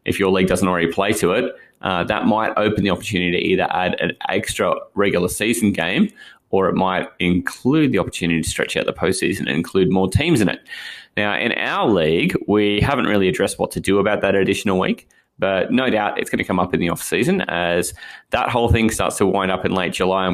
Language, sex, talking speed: English, male, 225 wpm